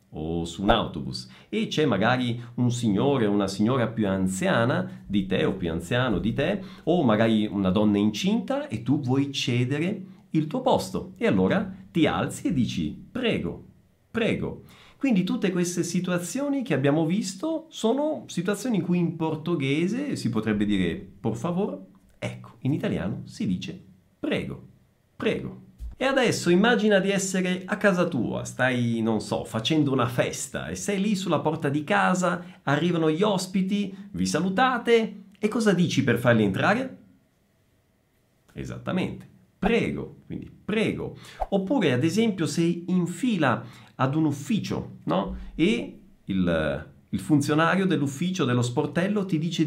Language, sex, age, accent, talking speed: Italian, male, 50-69, native, 145 wpm